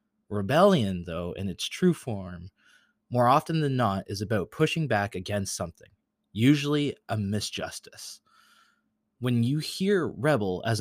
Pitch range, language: 105-140 Hz, English